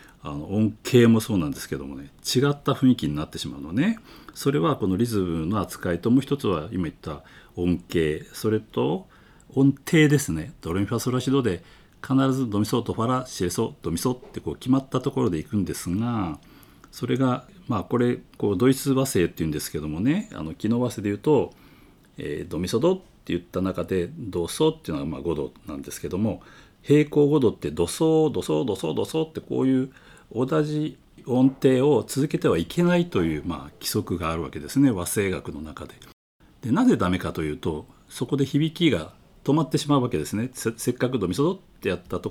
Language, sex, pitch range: Japanese, male, 90-140 Hz